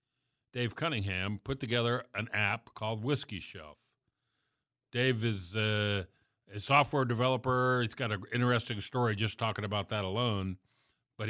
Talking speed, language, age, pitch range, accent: 140 wpm, English, 50-69, 100-130 Hz, American